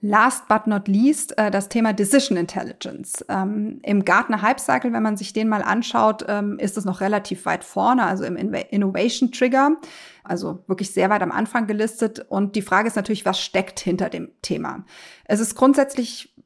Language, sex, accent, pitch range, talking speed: German, female, German, 205-245 Hz, 180 wpm